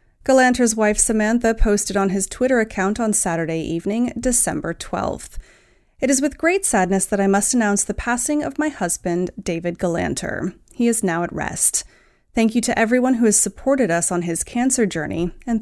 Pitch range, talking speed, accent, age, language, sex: 190-245 Hz, 180 wpm, American, 30-49, English, female